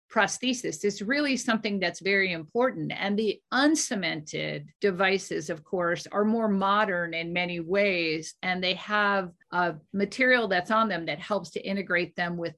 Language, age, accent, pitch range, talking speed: English, 50-69, American, 175-220 Hz, 155 wpm